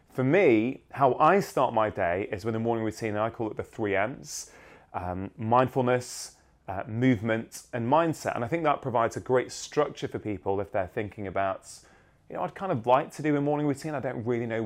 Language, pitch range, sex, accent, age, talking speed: English, 105-140 Hz, male, British, 30-49, 220 wpm